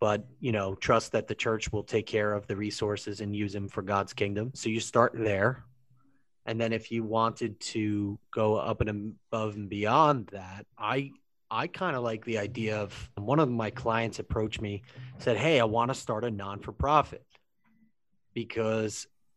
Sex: male